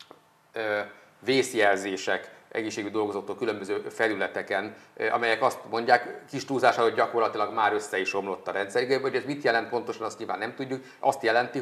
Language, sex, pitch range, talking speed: Hungarian, male, 100-120 Hz, 145 wpm